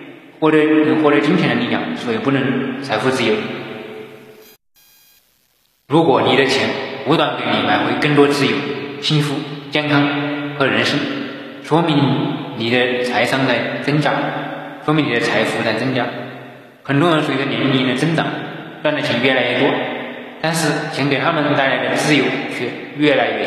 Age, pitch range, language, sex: 20-39, 125-145 Hz, Chinese, male